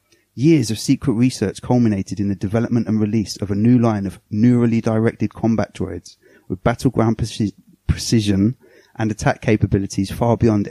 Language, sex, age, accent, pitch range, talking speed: English, male, 30-49, British, 100-125 Hz, 150 wpm